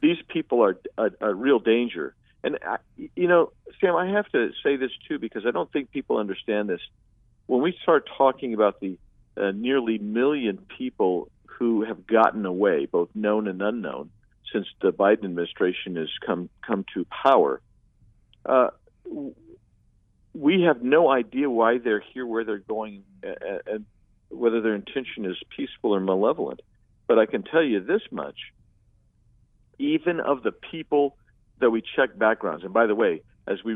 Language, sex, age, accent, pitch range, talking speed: English, male, 50-69, American, 105-150 Hz, 165 wpm